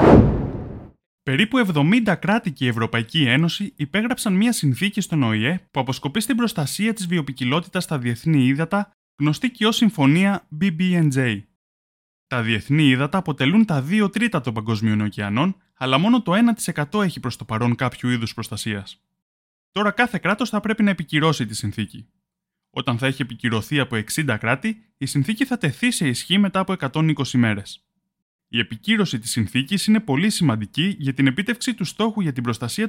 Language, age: Greek, 20-39